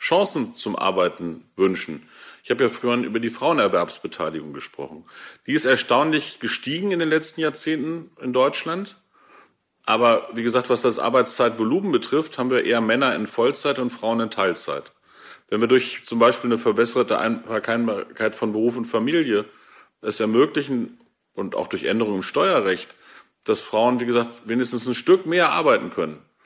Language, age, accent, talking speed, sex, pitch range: German, 40-59, German, 155 wpm, male, 115-145 Hz